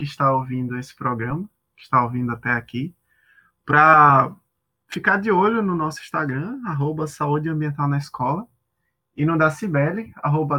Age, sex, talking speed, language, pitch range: 20-39, male, 155 wpm, Portuguese, 135-165 Hz